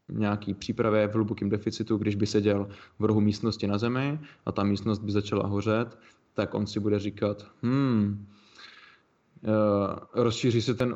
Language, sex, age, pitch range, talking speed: Slovak, male, 20-39, 105-115 Hz, 155 wpm